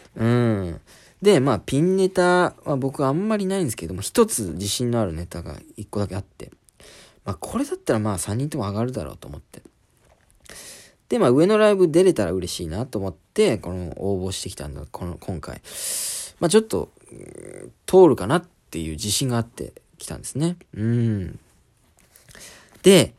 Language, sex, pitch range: Japanese, male, 90-135 Hz